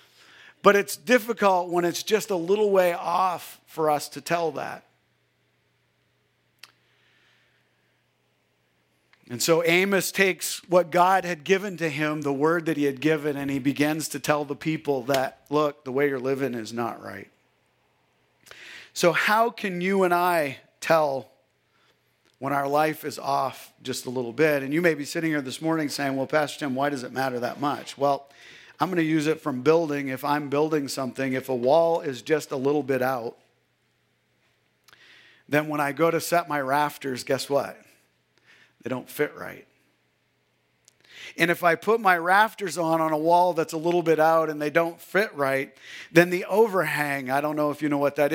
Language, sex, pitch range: English, male, 135-170 Hz